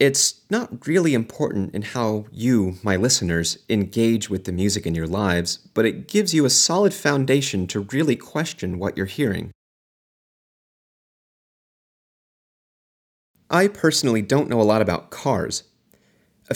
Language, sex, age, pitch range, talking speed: English, male, 30-49, 95-135 Hz, 140 wpm